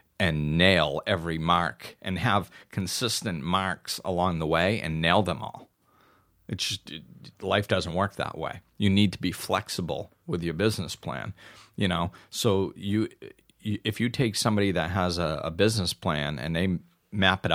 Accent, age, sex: American, 40-59, male